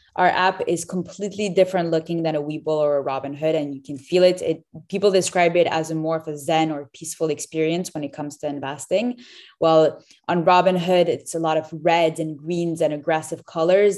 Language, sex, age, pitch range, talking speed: French, female, 20-39, 155-185 Hz, 210 wpm